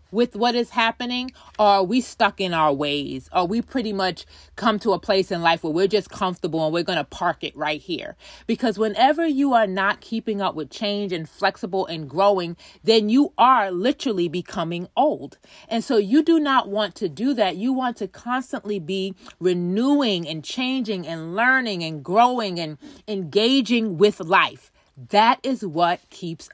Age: 30-49